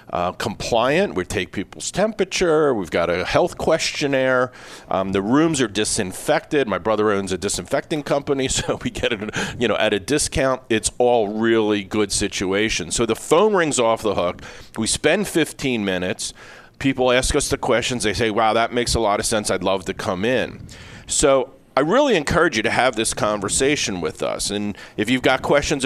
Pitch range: 105-135 Hz